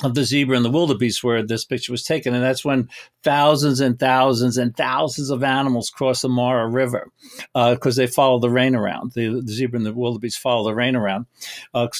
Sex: male